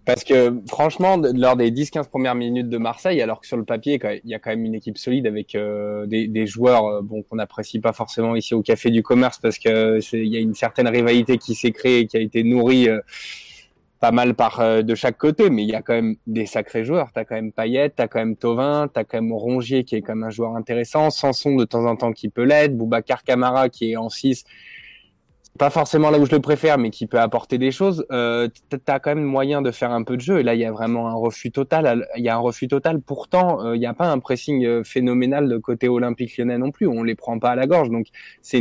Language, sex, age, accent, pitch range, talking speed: French, male, 20-39, French, 115-130 Hz, 265 wpm